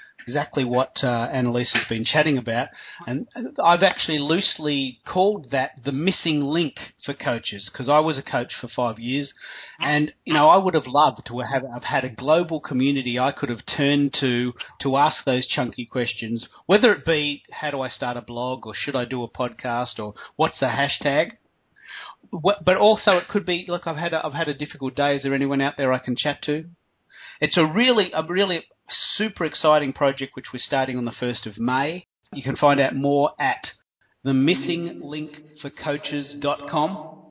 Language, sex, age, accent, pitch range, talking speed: English, male, 40-59, Australian, 125-150 Hz, 185 wpm